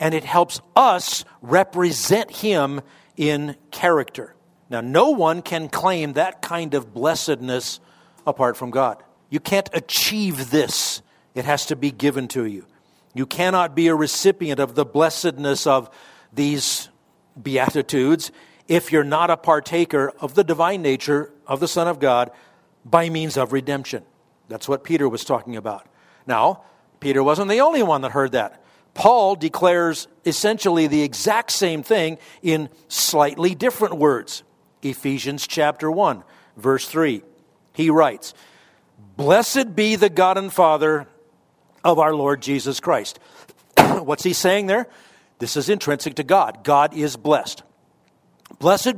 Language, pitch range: English, 140-175 Hz